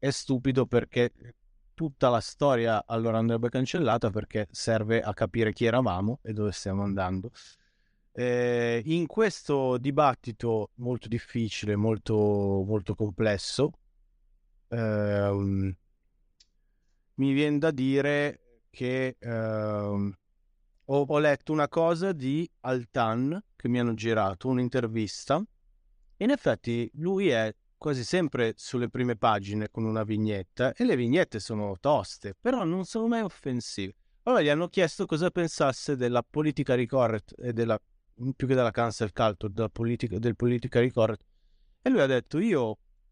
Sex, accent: male, native